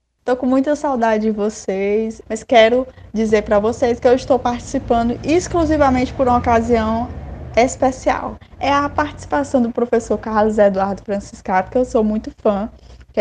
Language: Portuguese